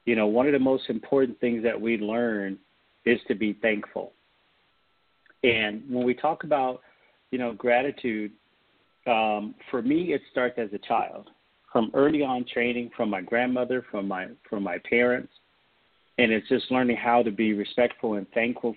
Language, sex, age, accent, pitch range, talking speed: English, male, 40-59, American, 110-130 Hz, 170 wpm